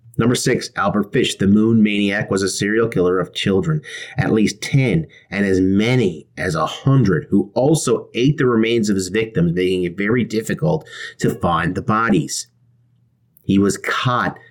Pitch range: 95-125 Hz